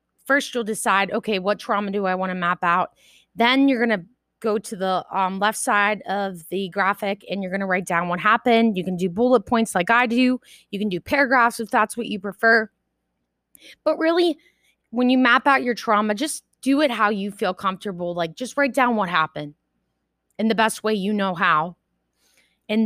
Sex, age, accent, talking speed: female, 20-39, American, 205 wpm